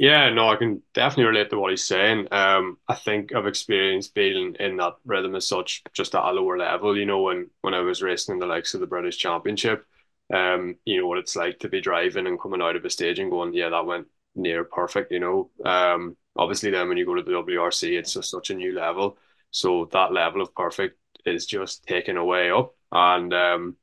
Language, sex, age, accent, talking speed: English, male, 20-39, Irish, 230 wpm